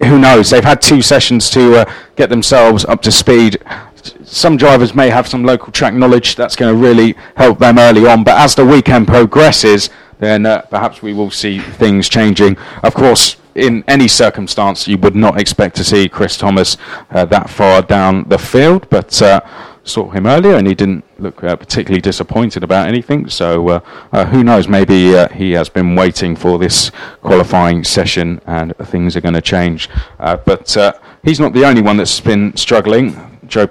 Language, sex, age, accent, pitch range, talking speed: English, male, 30-49, British, 95-120 Hz, 190 wpm